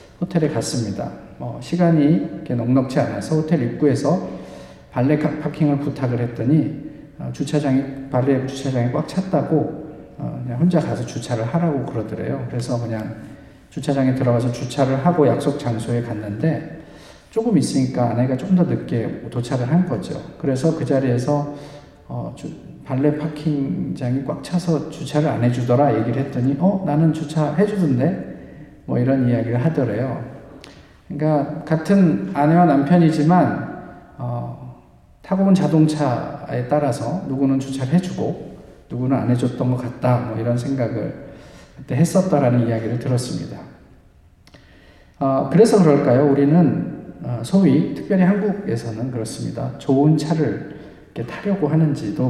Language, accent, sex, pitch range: Korean, native, male, 125-155 Hz